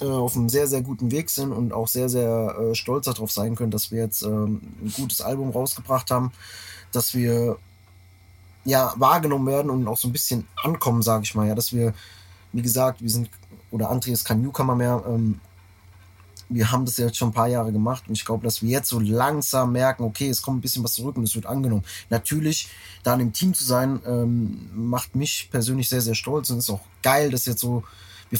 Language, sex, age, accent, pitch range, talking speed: German, male, 20-39, German, 110-130 Hz, 220 wpm